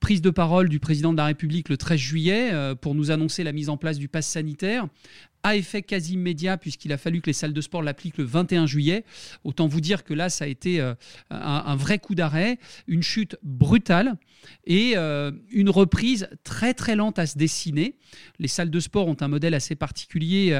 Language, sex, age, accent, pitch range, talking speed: French, male, 40-59, French, 150-195 Hz, 200 wpm